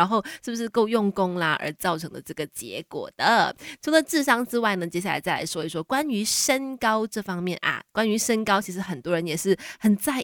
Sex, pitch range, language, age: female, 175-240 Hz, Chinese, 20-39